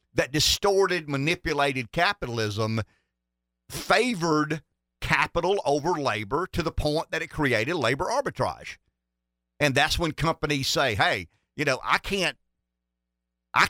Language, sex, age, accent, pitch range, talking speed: English, male, 50-69, American, 115-155 Hz, 120 wpm